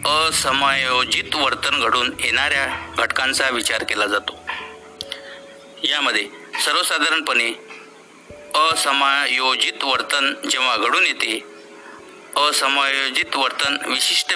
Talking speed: 75 wpm